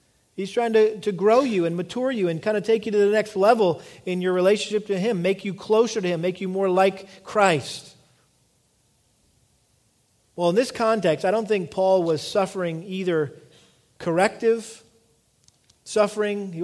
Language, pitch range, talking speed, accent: English, 155-195 Hz, 170 wpm, American